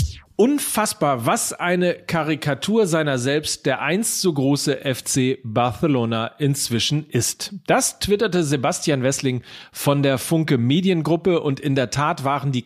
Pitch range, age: 130-185 Hz, 40-59